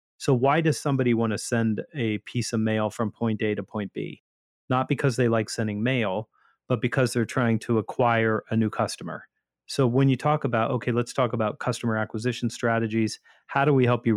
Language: English